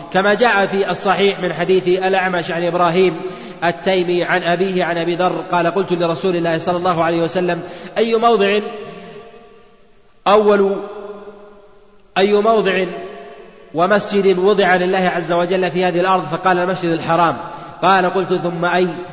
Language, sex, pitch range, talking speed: Arabic, male, 170-190 Hz, 135 wpm